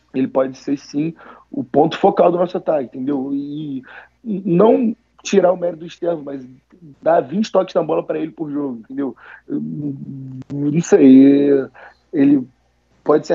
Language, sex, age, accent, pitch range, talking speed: Portuguese, male, 20-39, Brazilian, 130-150 Hz, 155 wpm